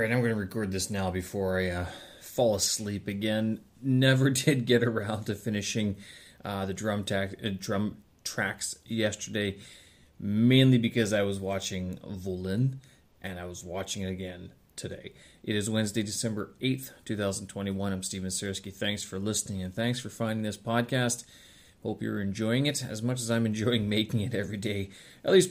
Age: 30-49